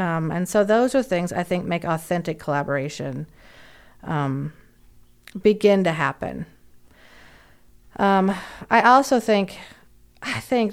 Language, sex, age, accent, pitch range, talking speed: English, female, 40-59, American, 160-200 Hz, 115 wpm